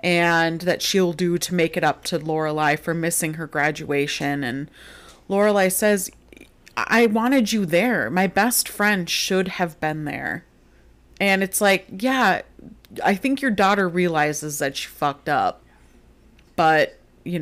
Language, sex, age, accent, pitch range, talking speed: English, female, 30-49, American, 165-205 Hz, 150 wpm